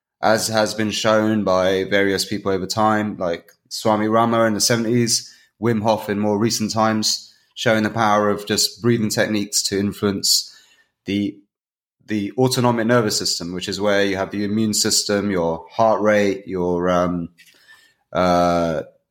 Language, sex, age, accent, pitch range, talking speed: English, male, 20-39, British, 100-120 Hz, 155 wpm